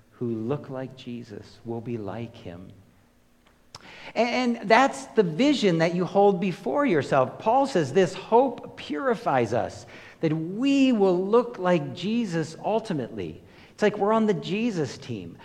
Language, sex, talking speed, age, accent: English, male, 145 wpm, 50-69, American